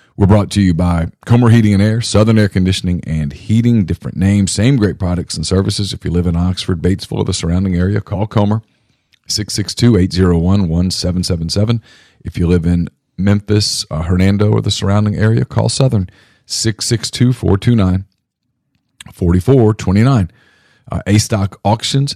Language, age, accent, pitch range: English, 40-59, American, 90-110 Hz